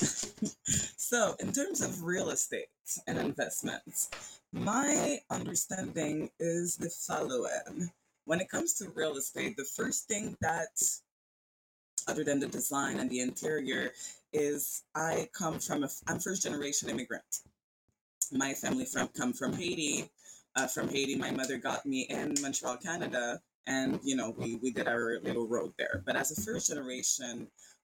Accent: American